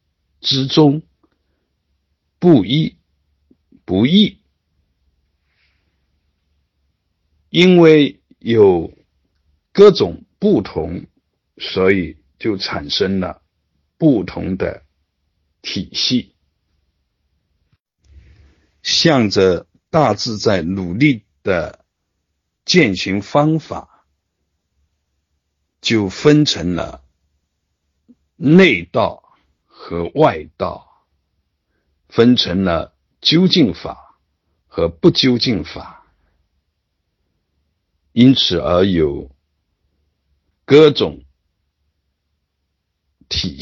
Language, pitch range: Chinese, 75-95 Hz